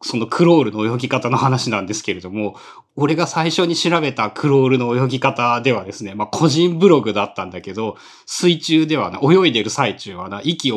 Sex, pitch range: male, 130-190 Hz